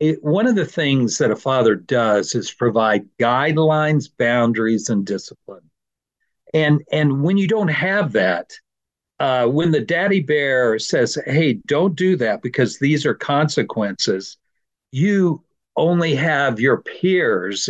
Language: English